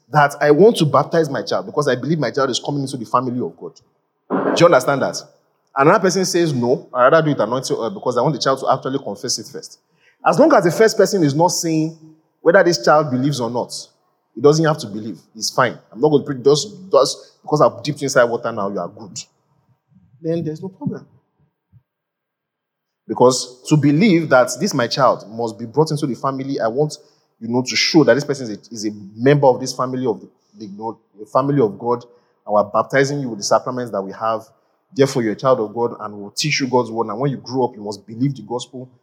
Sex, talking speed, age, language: male, 235 wpm, 30-49, English